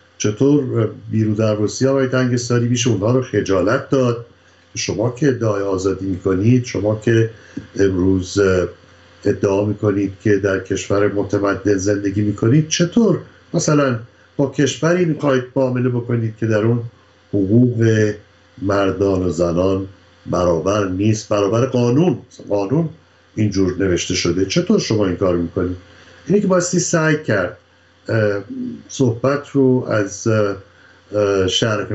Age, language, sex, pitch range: 60-79, Persian, male, 100-130 Hz